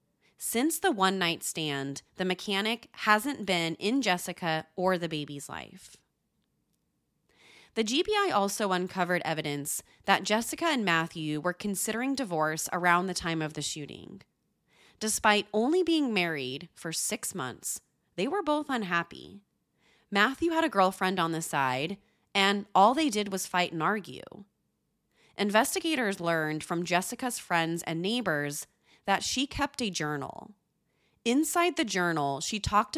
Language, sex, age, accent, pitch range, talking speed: English, female, 30-49, American, 160-220 Hz, 140 wpm